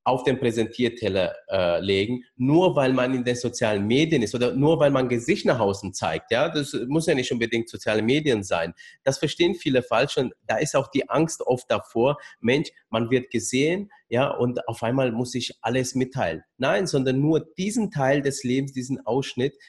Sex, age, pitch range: male, 30-49, 110-130 Hz